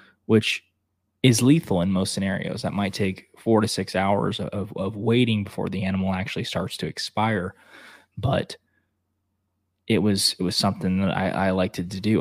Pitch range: 90-105 Hz